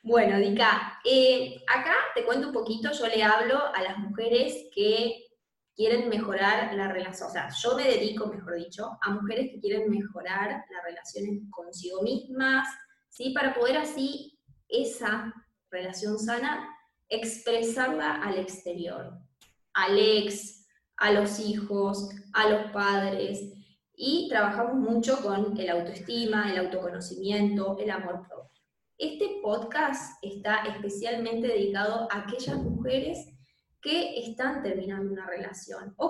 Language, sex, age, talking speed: Spanish, female, 20-39, 130 wpm